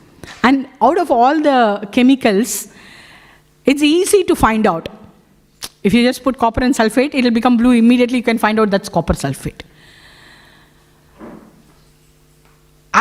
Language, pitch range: English, 200-280 Hz